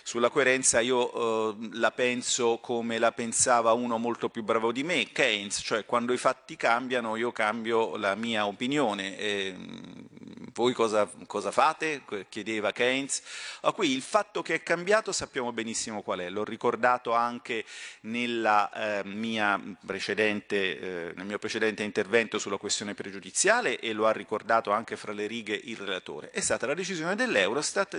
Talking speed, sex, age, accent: 155 wpm, male, 40-59, native